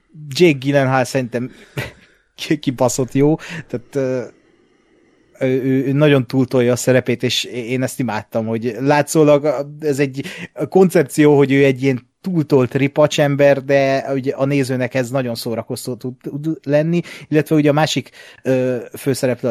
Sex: male